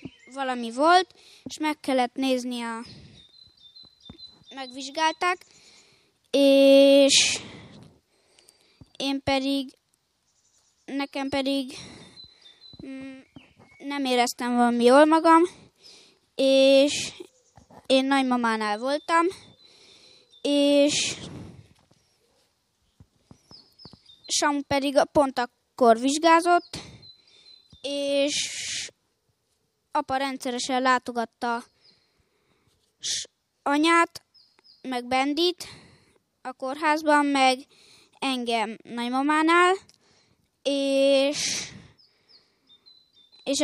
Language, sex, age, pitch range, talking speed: Hungarian, female, 20-39, 260-300 Hz, 60 wpm